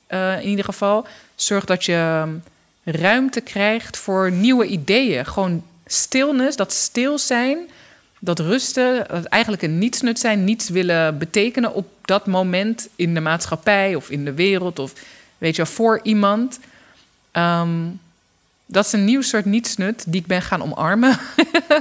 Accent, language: Dutch, Dutch